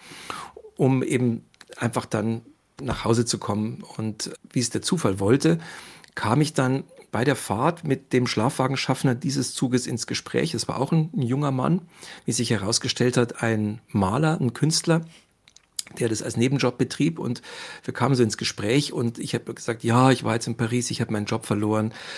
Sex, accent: male, German